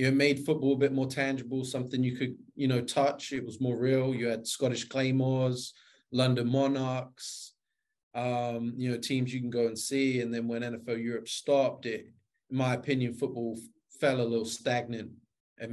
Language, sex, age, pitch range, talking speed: English, male, 20-39, 115-130 Hz, 185 wpm